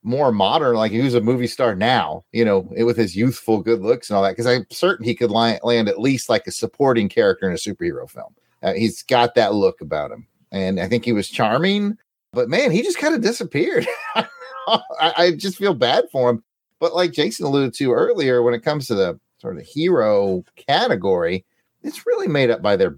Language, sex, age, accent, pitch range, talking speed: English, male, 30-49, American, 115-190 Hz, 220 wpm